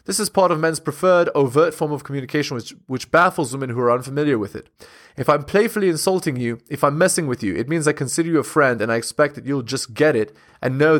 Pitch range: 130-165 Hz